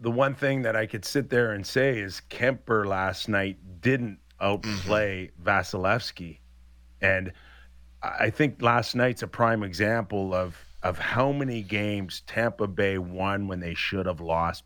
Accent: American